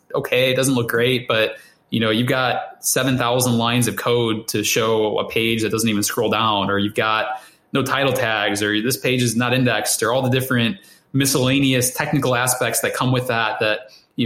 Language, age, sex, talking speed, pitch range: English, 20-39, male, 200 wpm, 110-125 Hz